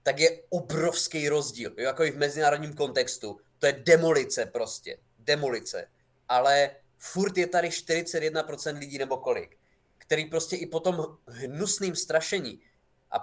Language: Czech